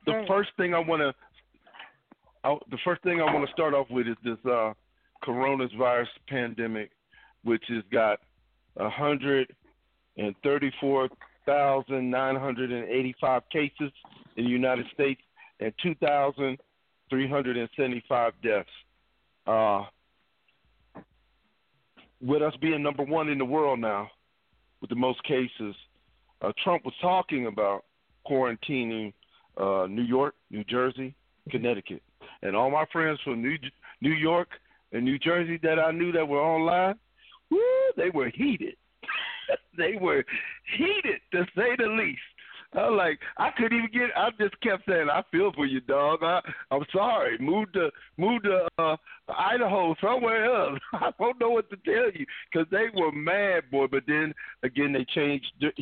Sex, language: male, English